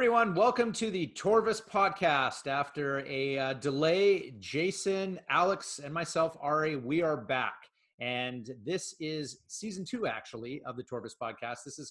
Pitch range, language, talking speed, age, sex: 130-165 Hz, English, 150 wpm, 30-49, male